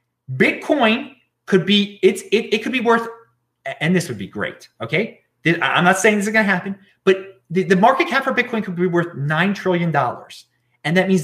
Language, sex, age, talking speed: English, male, 30-49, 205 wpm